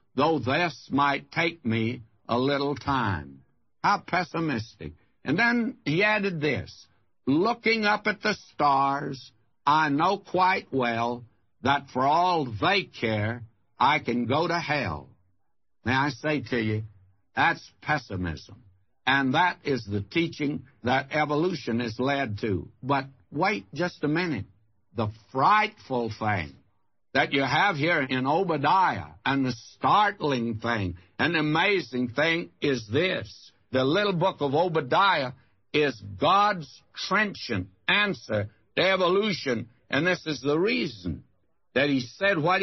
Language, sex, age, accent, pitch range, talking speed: English, male, 60-79, American, 115-170 Hz, 130 wpm